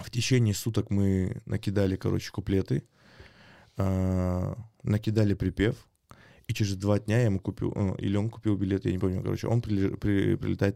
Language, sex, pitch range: Russian, male, 95-115 Hz